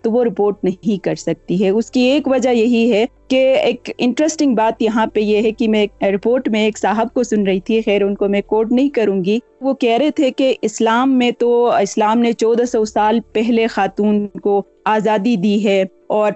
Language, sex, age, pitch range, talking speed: Urdu, female, 20-39, 205-240 Hz, 215 wpm